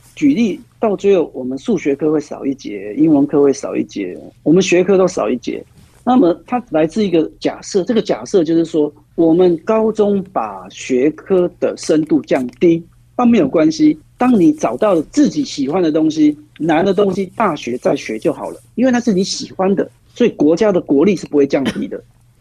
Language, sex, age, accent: Chinese, male, 50-69, native